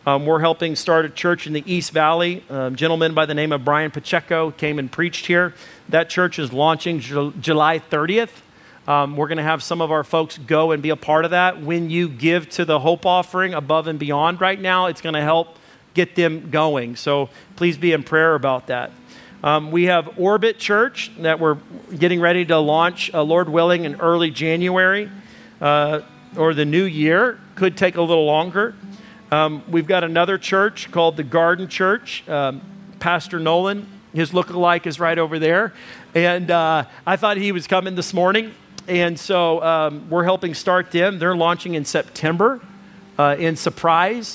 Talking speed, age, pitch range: 190 wpm, 40-59, 155-185 Hz